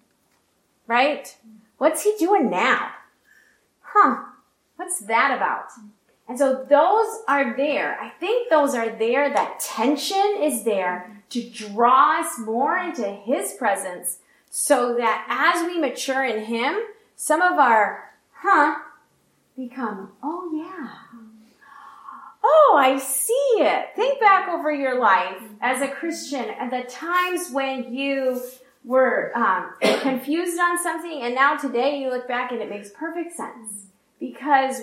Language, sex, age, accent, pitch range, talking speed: English, female, 30-49, American, 230-300 Hz, 135 wpm